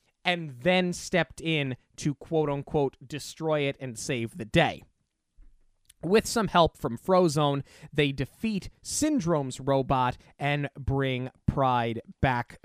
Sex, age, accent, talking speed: male, 30-49, American, 120 wpm